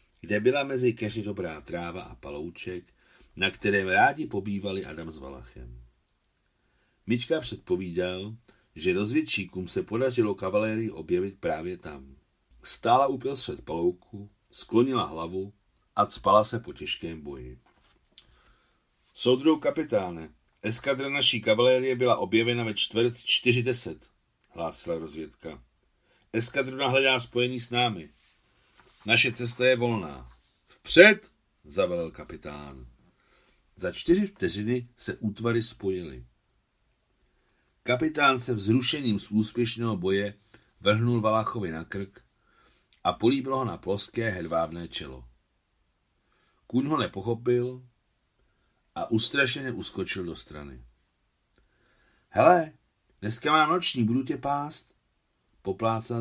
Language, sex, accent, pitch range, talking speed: Czech, male, native, 85-125 Hz, 105 wpm